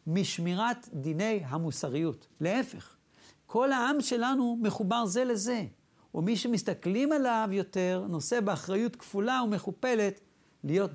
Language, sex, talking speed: Hebrew, male, 105 wpm